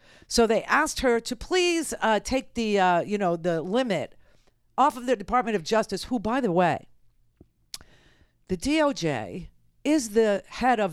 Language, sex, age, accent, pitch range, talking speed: English, female, 50-69, American, 165-260 Hz, 155 wpm